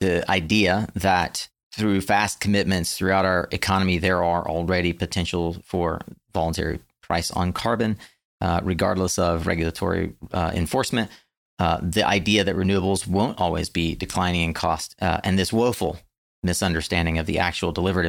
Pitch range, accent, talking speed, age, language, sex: 85-95 Hz, American, 145 wpm, 30-49, English, male